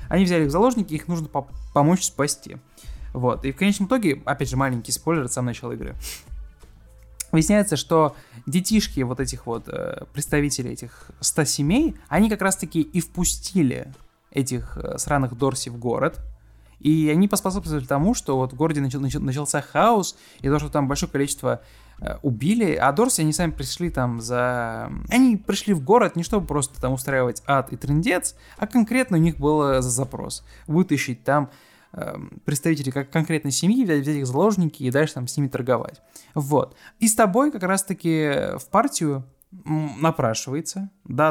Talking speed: 160 wpm